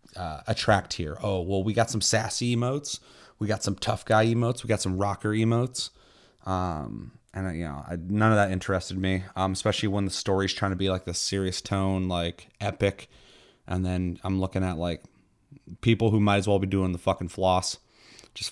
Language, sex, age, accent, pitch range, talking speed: English, male, 30-49, American, 95-115 Hz, 200 wpm